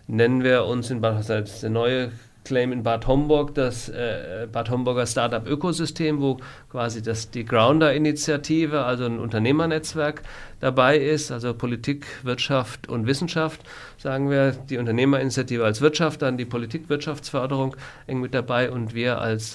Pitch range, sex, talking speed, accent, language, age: 120-145 Hz, male, 145 wpm, German, German, 50-69